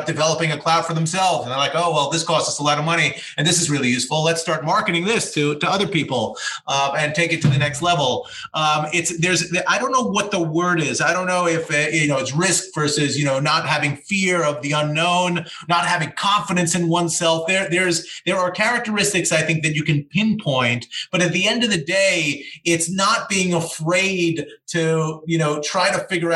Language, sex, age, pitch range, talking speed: English, male, 30-49, 155-185 Hz, 225 wpm